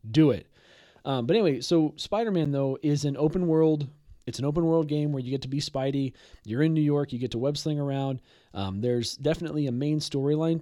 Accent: American